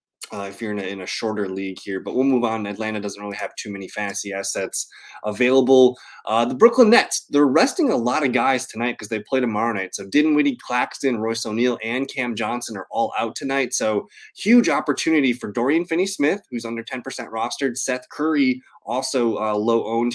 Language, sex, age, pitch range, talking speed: English, male, 20-39, 105-135 Hz, 195 wpm